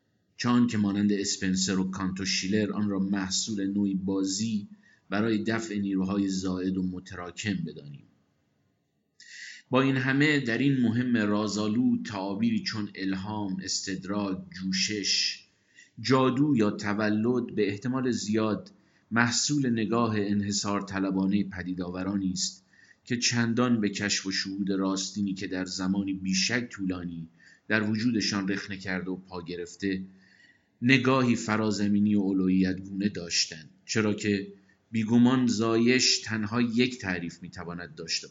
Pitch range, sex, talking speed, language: 95-110 Hz, male, 115 wpm, Persian